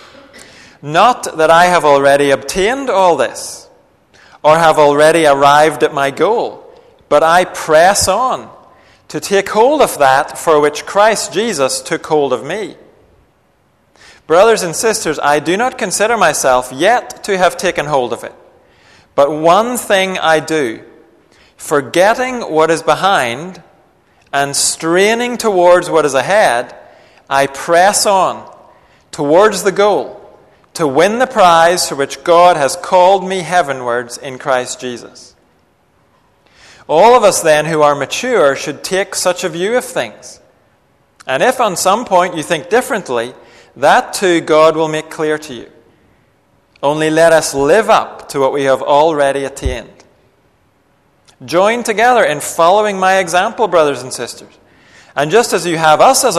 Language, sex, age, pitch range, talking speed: English, male, 40-59, 140-190 Hz, 150 wpm